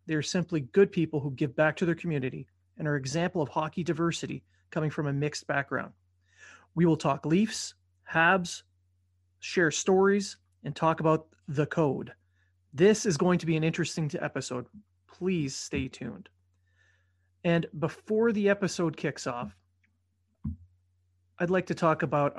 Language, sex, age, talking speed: English, male, 30-49, 150 wpm